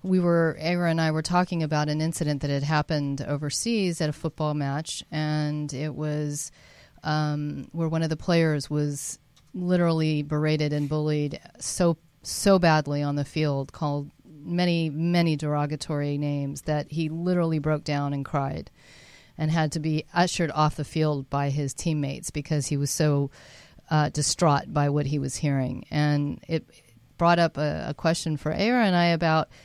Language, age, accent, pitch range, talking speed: English, 40-59, American, 145-165 Hz, 170 wpm